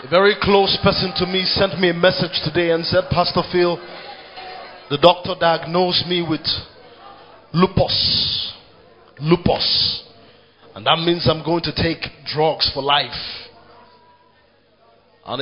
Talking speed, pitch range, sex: 130 wpm, 145-190 Hz, male